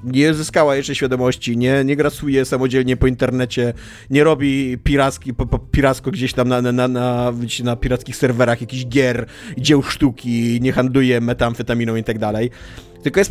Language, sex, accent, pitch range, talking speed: Polish, male, native, 115-150 Hz, 160 wpm